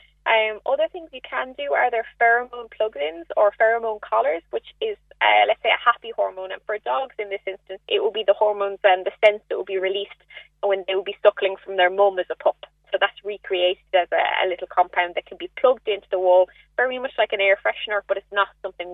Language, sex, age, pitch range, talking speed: English, female, 20-39, 185-230 Hz, 240 wpm